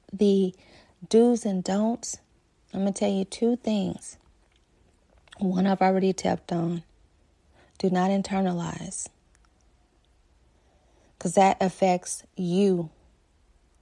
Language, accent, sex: English, American, female